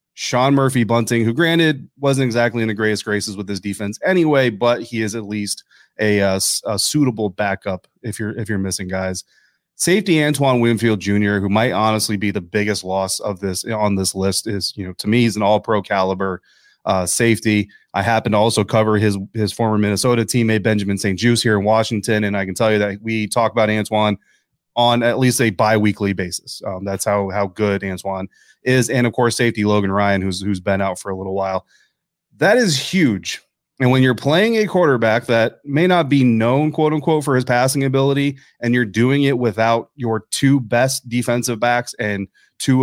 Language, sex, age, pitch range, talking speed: English, male, 30-49, 105-120 Hz, 200 wpm